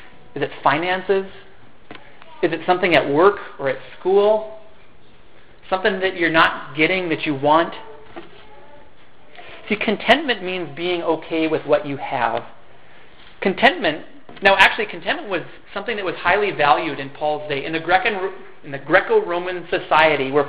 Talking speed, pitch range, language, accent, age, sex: 135 wpm, 150-200 Hz, English, American, 40-59, male